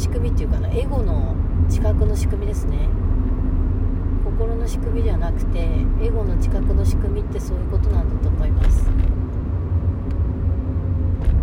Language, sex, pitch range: Japanese, female, 80-90 Hz